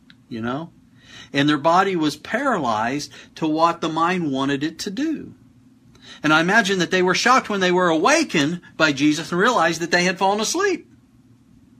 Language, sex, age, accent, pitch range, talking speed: English, male, 50-69, American, 125-180 Hz, 180 wpm